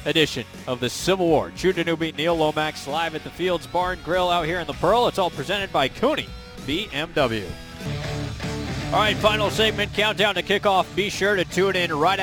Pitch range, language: 135-175 Hz, English